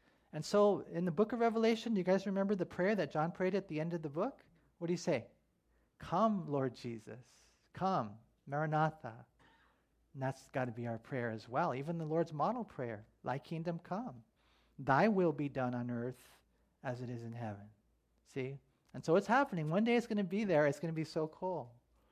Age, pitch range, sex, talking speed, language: 40-59, 145-190 Hz, male, 210 wpm, English